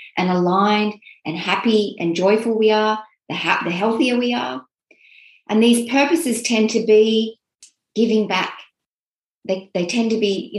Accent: Australian